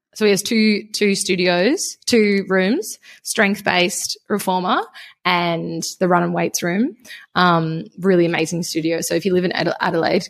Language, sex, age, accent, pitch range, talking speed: English, female, 20-39, Australian, 170-200 Hz, 150 wpm